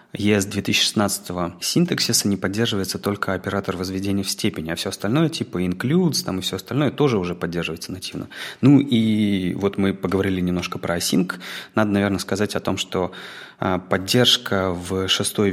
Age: 30-49